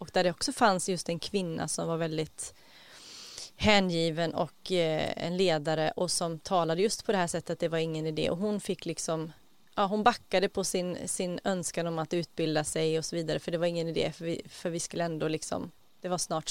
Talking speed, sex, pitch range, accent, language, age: 215 wpm, female, 170-210 Hz, Swedish, English, 30-49